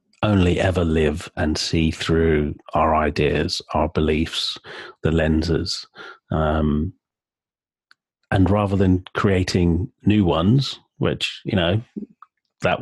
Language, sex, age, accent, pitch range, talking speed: English, male, 30-49, British, 80-95 Hz, 110 wpm